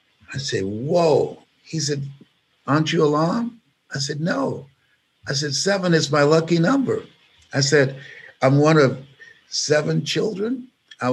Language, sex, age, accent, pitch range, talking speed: English, male, 60-79, American, 140-225 Hz, 140 wpm